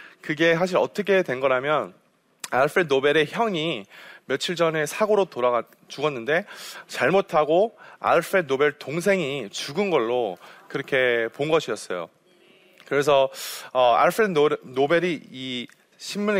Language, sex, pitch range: Korean, male, 135-185 Hz